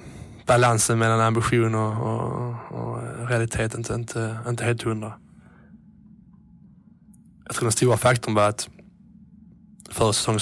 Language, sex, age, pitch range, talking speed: English, male, 20-39, 105-120 Hz, 120 wpm